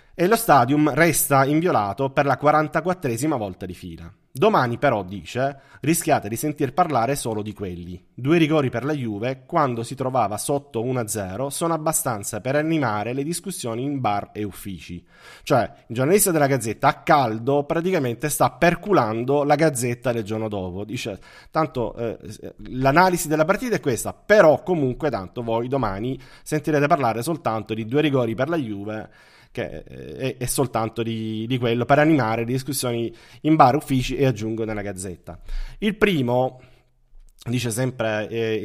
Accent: native